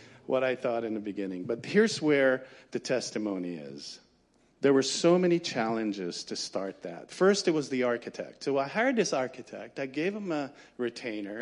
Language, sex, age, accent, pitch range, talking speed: English, male, 50-69, American, 125-165 Hz, 185 wpm